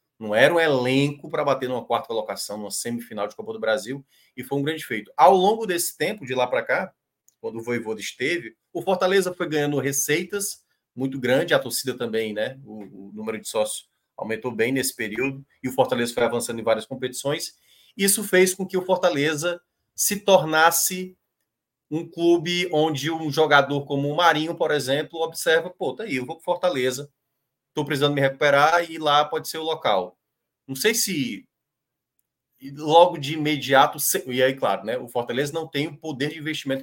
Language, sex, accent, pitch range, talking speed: Portuguese, male, Brazilian, 130-175 Hz, 190 wpm